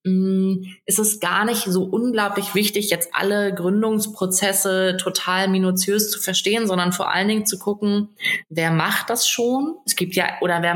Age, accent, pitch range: 20-39, German, 175-205 Hz